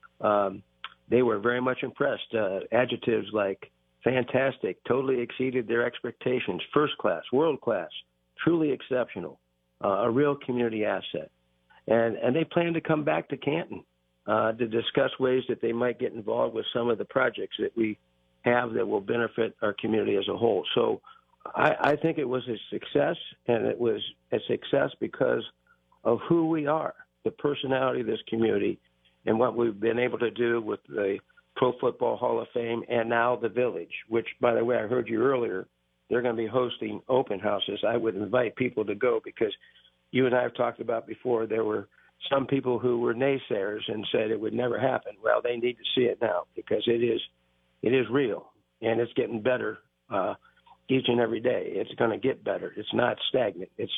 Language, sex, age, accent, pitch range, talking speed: English, male, 50-69, American, 110-135 Hz, 190 wpm